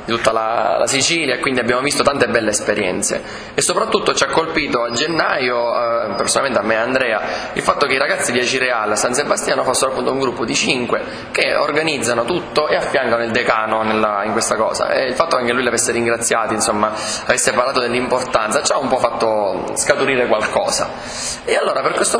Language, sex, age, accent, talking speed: Italian, male, 20-39, native, 205 wpm